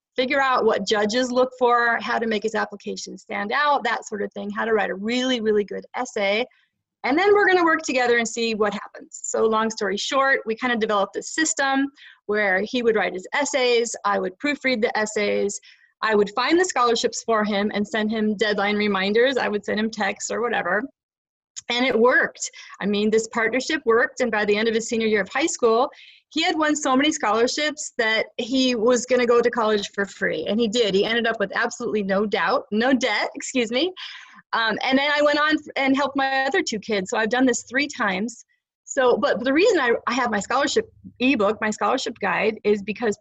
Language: English